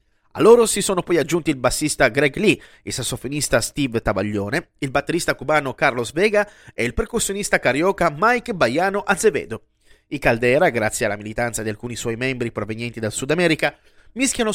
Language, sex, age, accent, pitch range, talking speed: Italian, male, 30-49, native, 130-195 Hz, 165 wpm